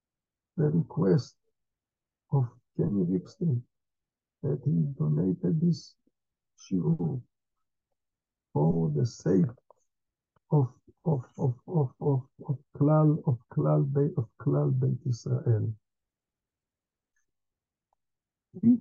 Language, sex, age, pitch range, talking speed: English, male, 60-79, 125-175 Hz, 90 wpm